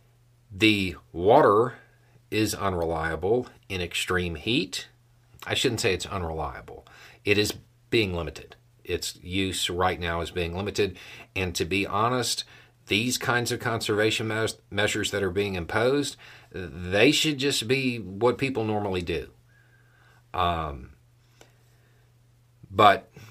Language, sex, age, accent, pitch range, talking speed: English, male, 40-59, American, 95-120 Hz, 120 wpm